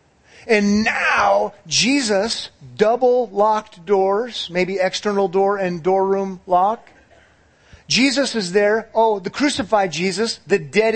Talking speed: 120 wpm